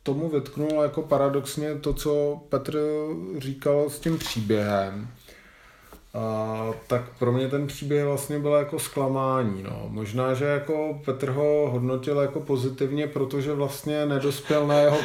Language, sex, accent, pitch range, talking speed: Czech, male, native, 115-145 Hz, 140 wpm